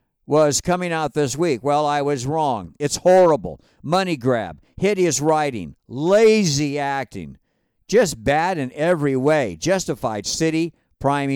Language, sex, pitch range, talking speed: English, male, 145-195 Hz, 130 wpm